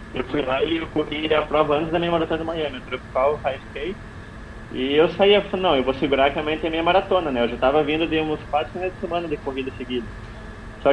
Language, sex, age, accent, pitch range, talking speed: Portuguese, male, 20-39, Brazilian, 120-160 Hz, 260 wpm